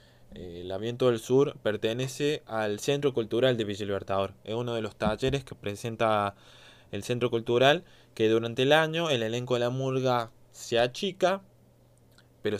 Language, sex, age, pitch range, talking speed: Spanish, male, 20-39, 110-130 Hz, 155 wpm